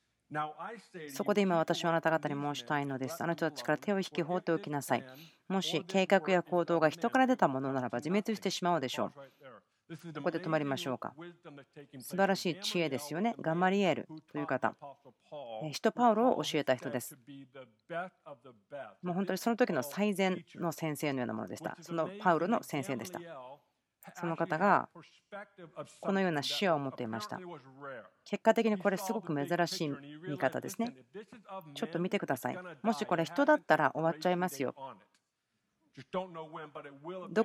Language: Japanese